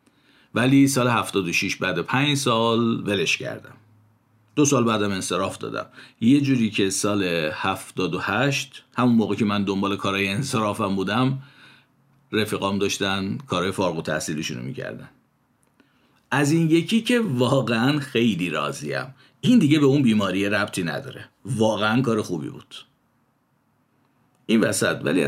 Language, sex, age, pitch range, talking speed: Persian, male, 50-69, 100-135 Hz, 135 wpm